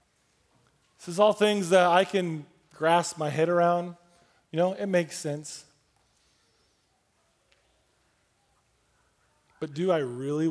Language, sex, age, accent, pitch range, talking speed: English, male, 20-39, American, 145-200 Hz, 110 wpm